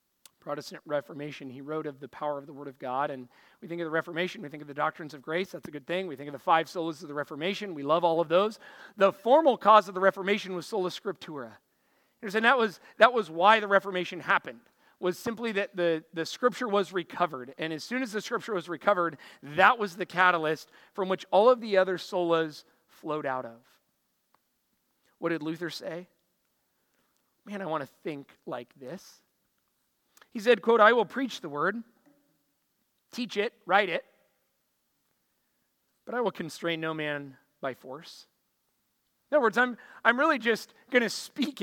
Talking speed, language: 190 wpm, English